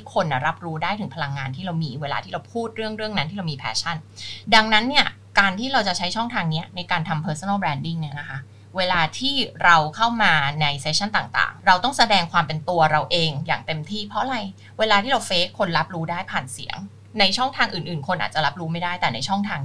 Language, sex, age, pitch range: Thai, female, 20-39, 160-215 Hz